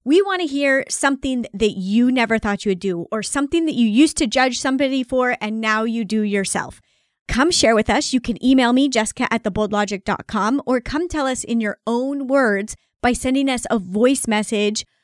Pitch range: 210-265 Hz